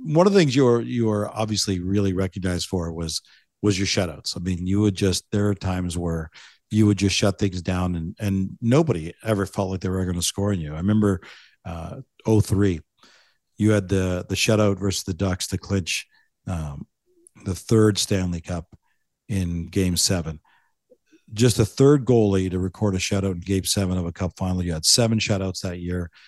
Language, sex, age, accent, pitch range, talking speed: English, male, 50-69, American, 90-115 Hz, 200 wpm